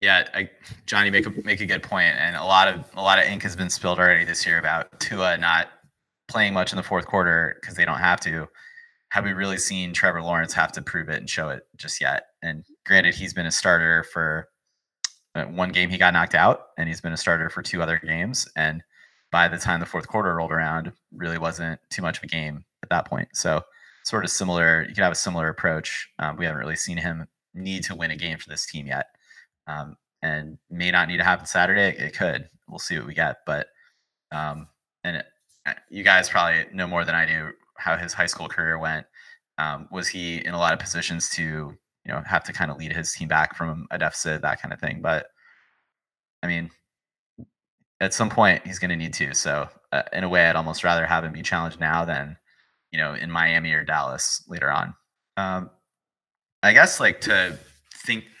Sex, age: male, 20-39